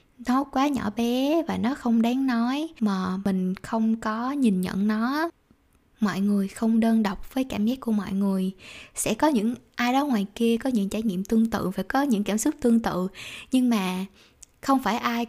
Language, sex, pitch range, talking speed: Vietnamese, female, 200-245 Hz, 205 wpm